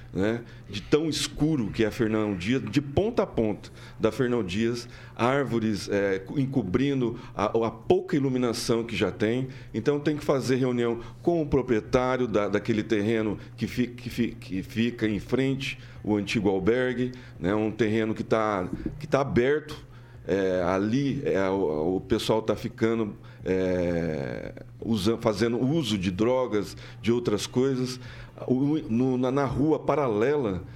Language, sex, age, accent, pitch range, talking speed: Portuguese, male, 40-59, Brazilian, 110-130 Hz, 150 wpm